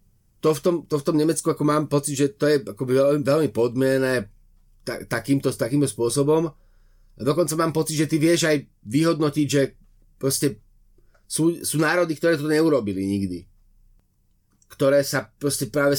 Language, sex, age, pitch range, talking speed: Slovak, male, 30-49, 105-145 Hz, 145 wpm